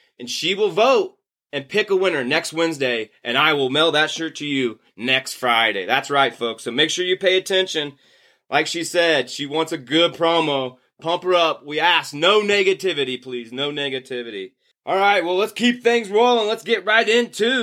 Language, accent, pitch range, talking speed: English, American, 135-205 Hz, 195 wpm